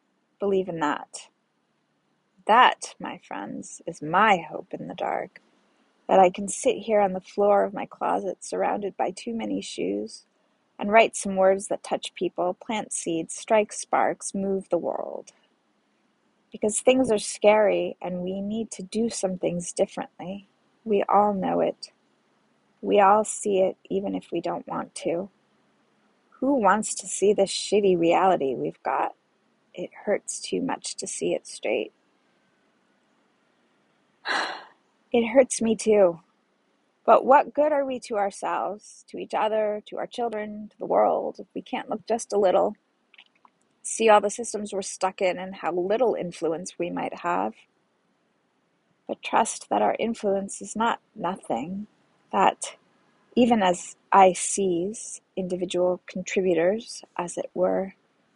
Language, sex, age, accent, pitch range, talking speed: English, female, 30-49, American, 185-220 Hz, 150 wpm